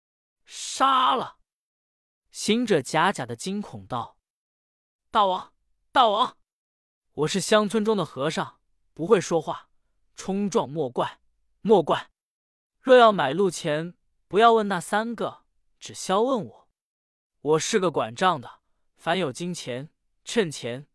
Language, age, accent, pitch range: Chinese, 20-39, native, 145-205 Hz